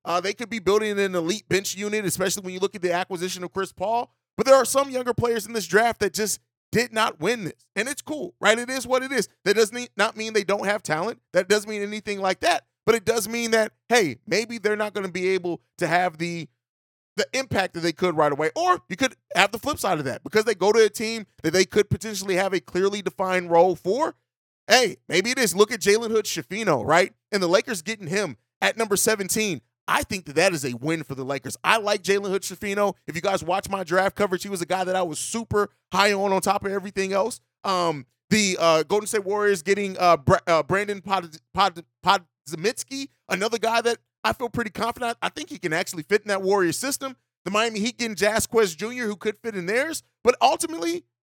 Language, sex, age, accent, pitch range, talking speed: English, male, 30-49, American, 180-225 Hz, 235 wpm